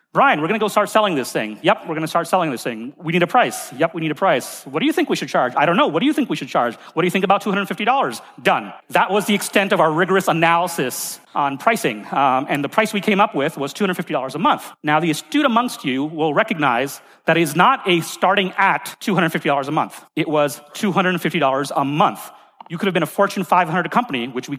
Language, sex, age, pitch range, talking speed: English, male, 40-59, 145-200 Hz, 255 wpm